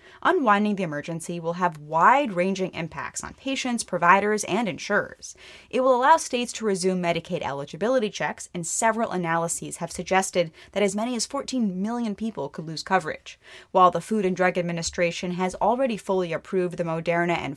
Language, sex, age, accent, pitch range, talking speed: English, female, 20-39, American, 170-225 Hz, 165 wpm